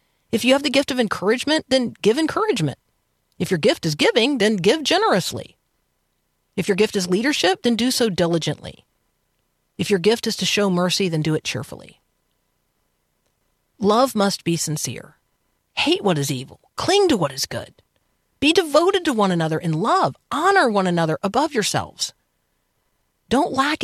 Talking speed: 165 wpm